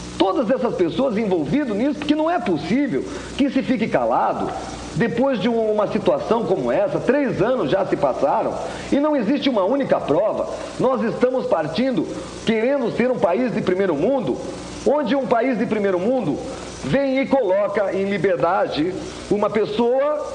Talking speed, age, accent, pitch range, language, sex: 155 wpm, 40-59, Brazilian, 185-255 Hz, Portuguese, male